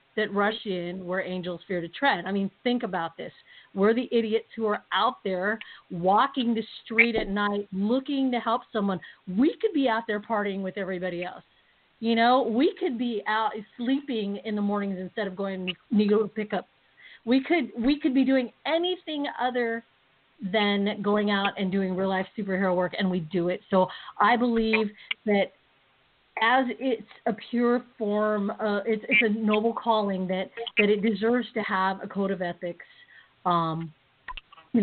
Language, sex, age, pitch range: English, female, 40-59, 185-230 Hz